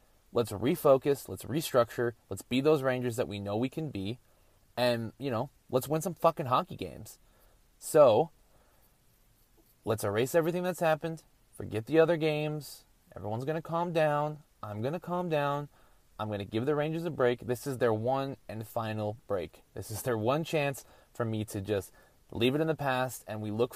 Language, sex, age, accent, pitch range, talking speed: English, male, 20-39, American, 110-150 Hz, 190 wpm